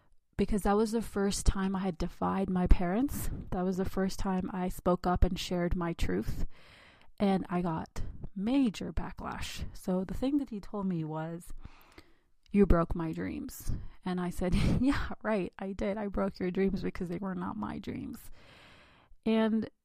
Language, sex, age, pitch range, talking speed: English, female, 30-49, 180-210 Hz, 175 wpm